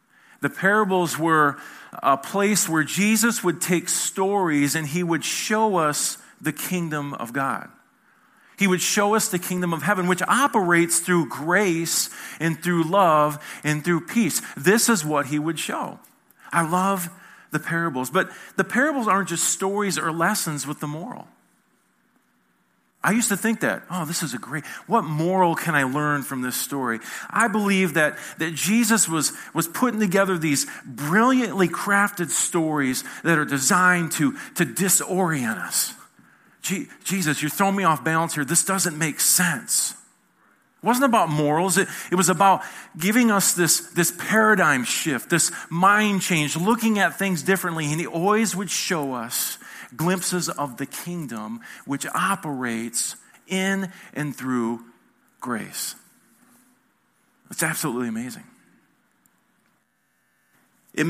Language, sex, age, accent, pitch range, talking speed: English, male, 40-59, American, 150-195 Hz, 145 wpm